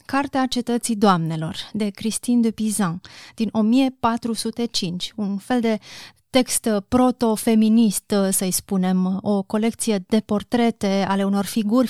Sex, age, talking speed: female, 30-49, 115 wpm